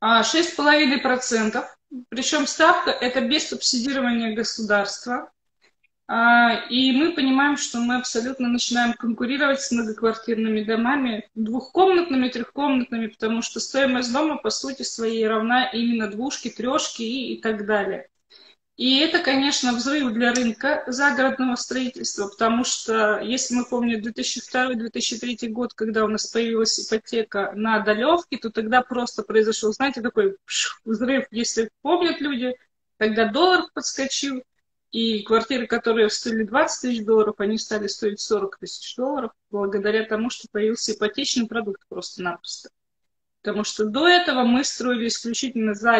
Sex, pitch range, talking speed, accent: female, 220-260 Hz, 125 wpm, native